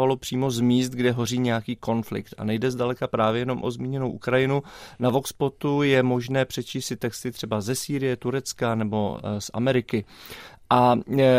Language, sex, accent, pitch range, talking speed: Czech, male, native, 120-140 Hz, 160 wpm